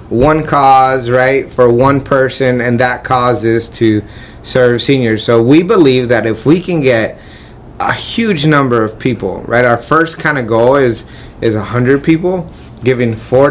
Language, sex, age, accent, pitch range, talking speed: English, male, 30-49, American, 115-135 Hz, 170 wpm